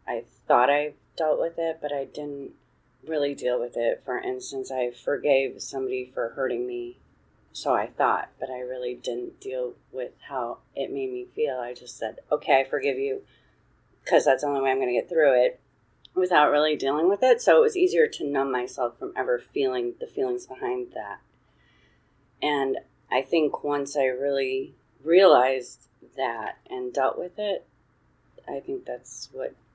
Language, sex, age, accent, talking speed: English, female, 30-49, American, 180 wpm